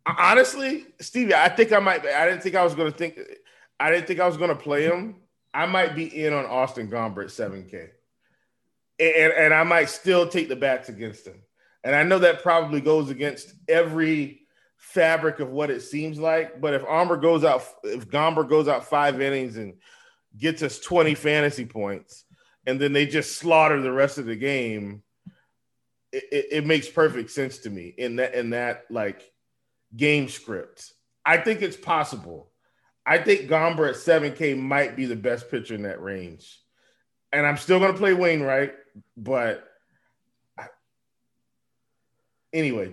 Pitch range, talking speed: 120-165 Hz, 175 wpm